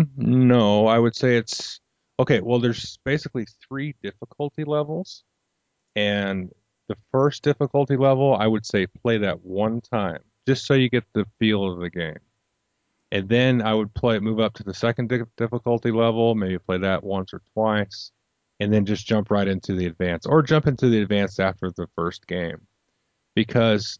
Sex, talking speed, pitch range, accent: male, 175 wpm, 95-120 Hz, American